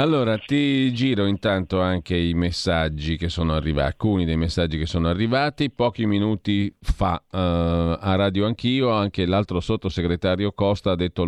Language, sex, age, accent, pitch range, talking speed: Italian, male, 40-59, native, 85-110 Hz, 155 wpm